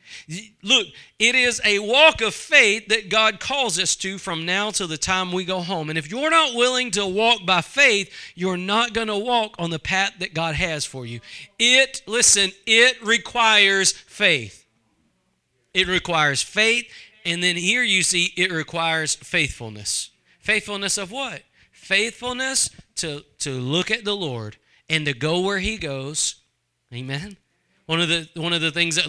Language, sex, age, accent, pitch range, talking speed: English, male, 40-59, American, 145-210 Hz, 175 wpm